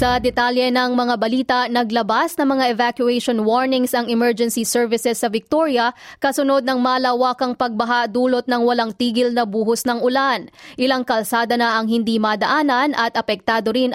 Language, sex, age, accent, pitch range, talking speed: Filipino, female, 20-39, native, 170-245 Hz, 160 wpm